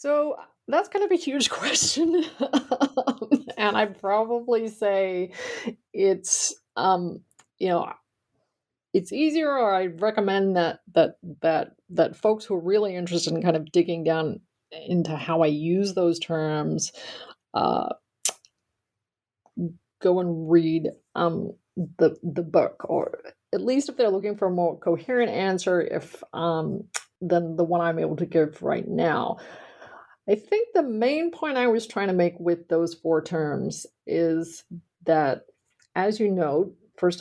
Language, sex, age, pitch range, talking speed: English, female, 30-49, 165-215 Hz, 145 wpm